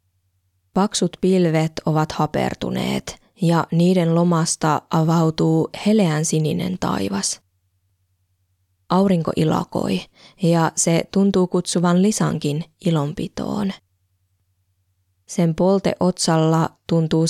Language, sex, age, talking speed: Finnish, female, 20-39, 80 wpm